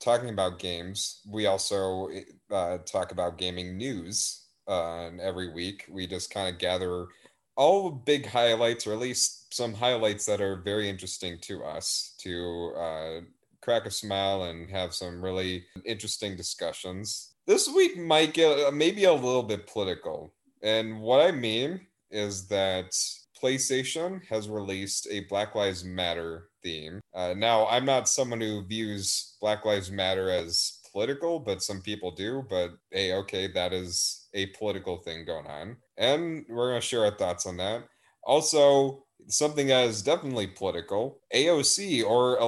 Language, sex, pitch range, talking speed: English, male, 95-125 Hz, 155 wpm